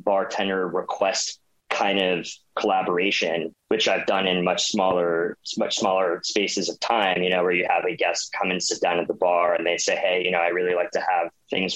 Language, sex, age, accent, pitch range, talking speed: English, male, 20-39, American, 90-105 Hz, 215 wpm